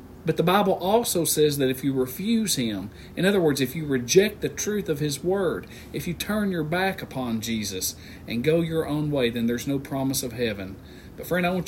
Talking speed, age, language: 220 wpm, 40-59, English